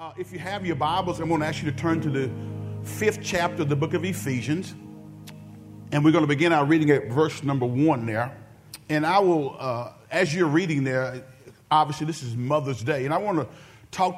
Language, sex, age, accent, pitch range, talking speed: English, male, 40-59, American, 125-160 Hz, 220 wpm